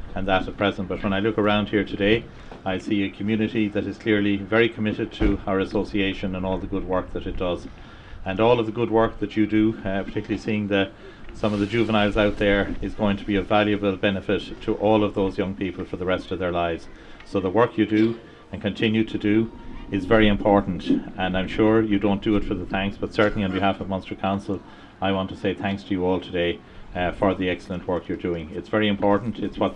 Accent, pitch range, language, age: Irish, 95-105 Hz, English, 40-59